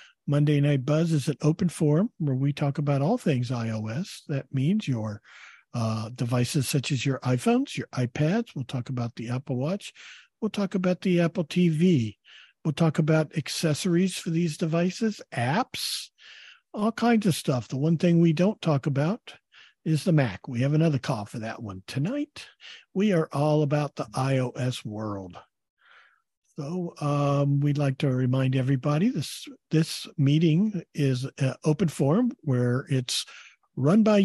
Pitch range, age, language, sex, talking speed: 130-170 Hz, 50-69, English, male, 160 wpm